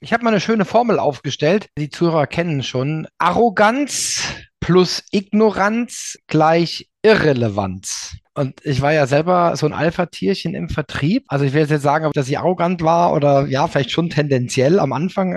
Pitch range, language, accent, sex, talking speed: 130-160 Hz, German, German, male, 170 wpm